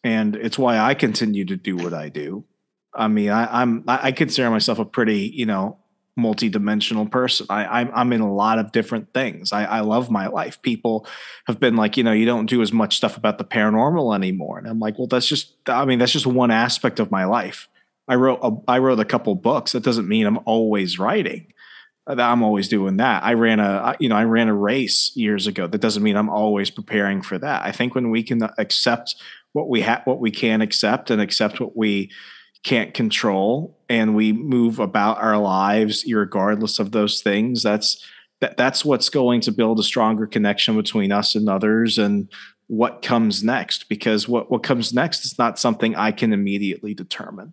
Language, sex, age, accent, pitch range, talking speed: English, male, 30-49, American, 105-120 Hz, 200 wpm